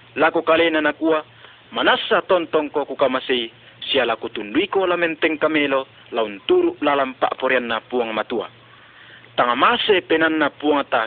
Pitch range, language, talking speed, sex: 145-225 Hz, Indonesian, 120 wpm, male